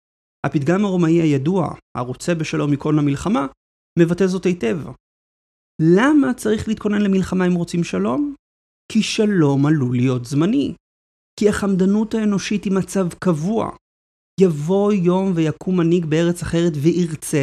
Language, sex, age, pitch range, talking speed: Hebrew, male, 30-49, 140-190 Hz, 120 wpm